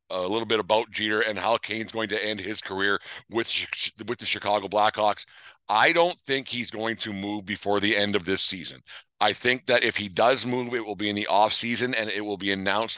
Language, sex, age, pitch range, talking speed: English, male, 50-69, 95-110 Hz, 225 wpm